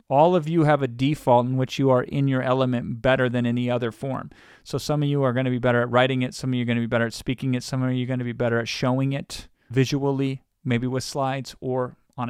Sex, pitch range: male, 125-145 Hz